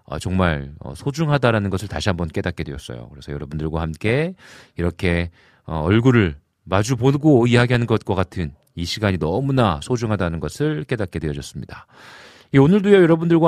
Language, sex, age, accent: Korean, male, 40-59, native